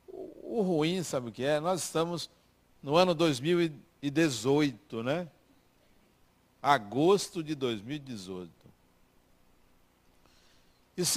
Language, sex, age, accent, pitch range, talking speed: Portuguese, male, 60-79, Brazilian, 120-185 Hz, 80 wpm